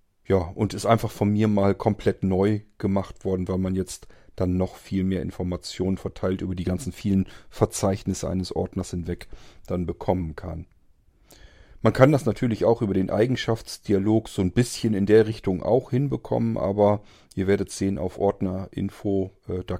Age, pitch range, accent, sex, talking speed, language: 40-59, 90-110 Hz, German, male, 165 wpm, German